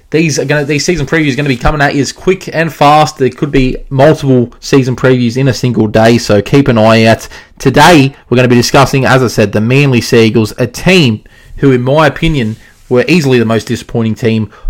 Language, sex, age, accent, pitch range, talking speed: English, male, 20-39, Australian, 120-145 Hz, 235 wpm